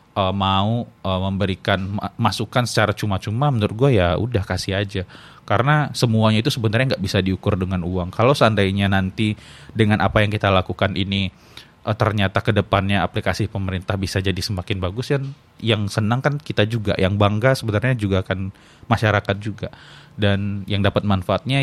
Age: 20-39